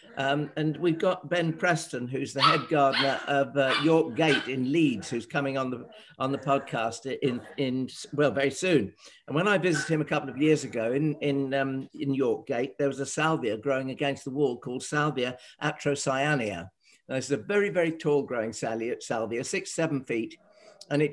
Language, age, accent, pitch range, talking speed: English, 50-69, British, 135-165 Hz, 195 wpm